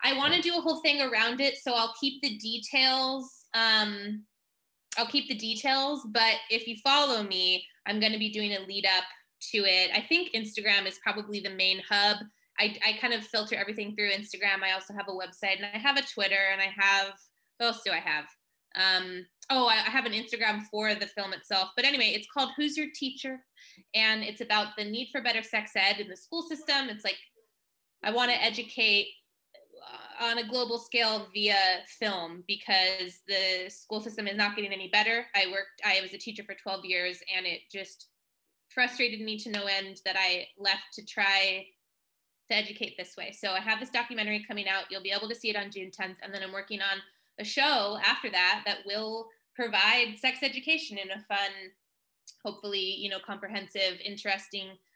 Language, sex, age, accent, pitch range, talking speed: English, female, 20-39, American, 195-235 Hz, 200 wpm